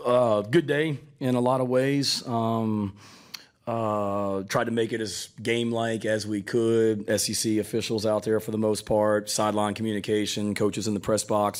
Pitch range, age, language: 100-110 Hz, 30-49, English